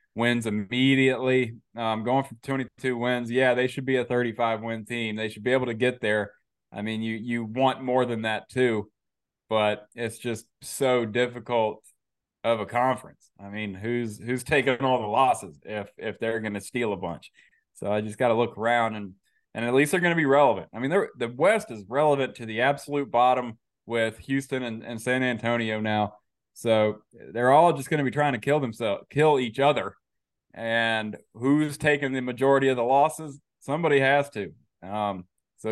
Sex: male